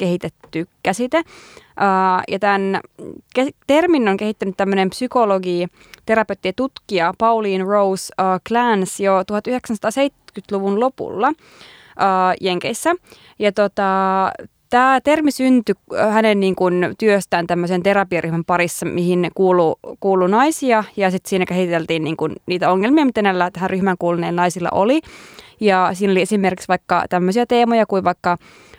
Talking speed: 115 wpm